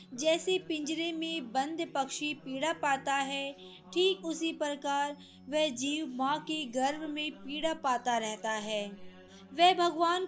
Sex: female